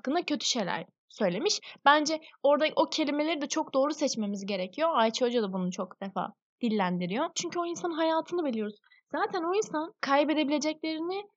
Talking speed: 155 wpm